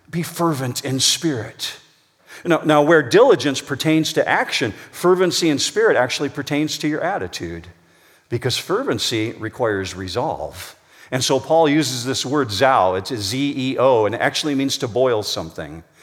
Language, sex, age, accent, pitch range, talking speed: English, male, 50-69, American, 120-165 Hz, 150 wpm